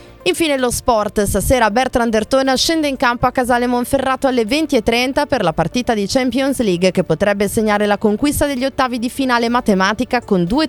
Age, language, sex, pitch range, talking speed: 20-39, Italian, female, 185-255 Hz, 180 wpm